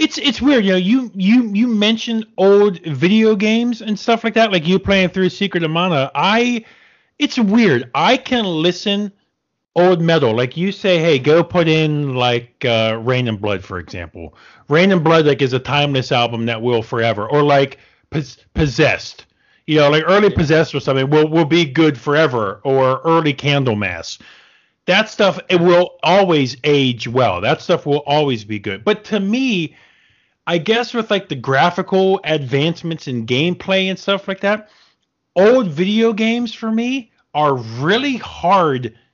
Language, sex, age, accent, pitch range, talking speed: English, male, 40-59, American, 145-215 Hz, 170 wpm